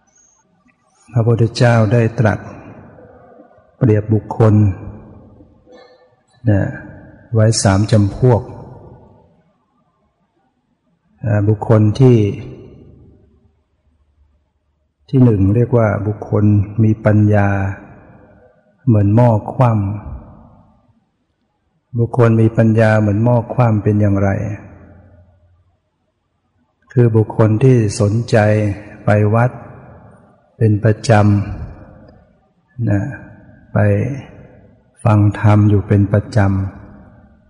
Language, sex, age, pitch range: Thai, male, 60-79, 100-115 Hz